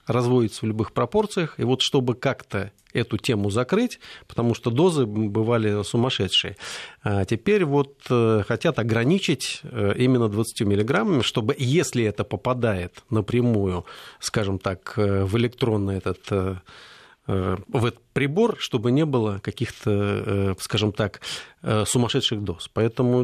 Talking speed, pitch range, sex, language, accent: 110 wpm, 105-135 Hz, male, Russian, native